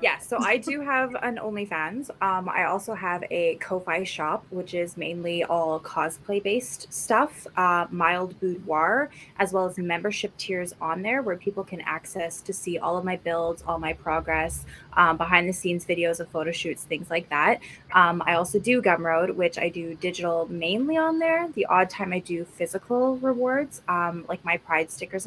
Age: 20-39